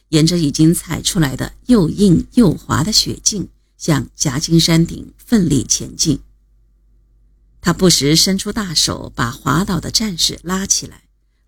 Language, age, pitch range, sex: Chinese, 50-69, 145-200 Hz, female